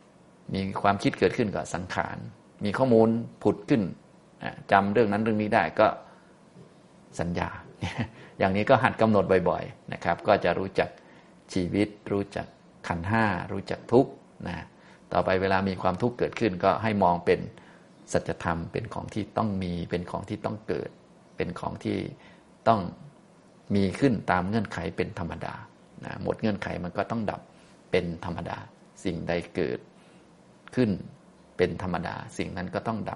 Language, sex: Thai, male